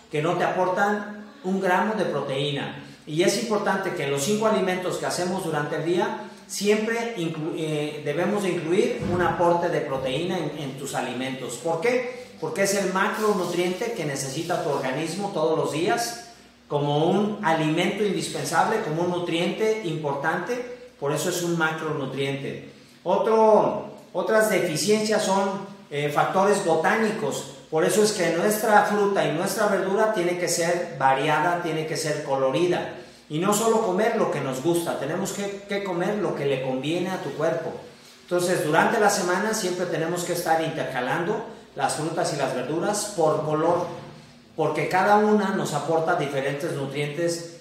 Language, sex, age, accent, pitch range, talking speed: Spanish, male, 40-59, Mexican, 150-195 Hz, 160 wpm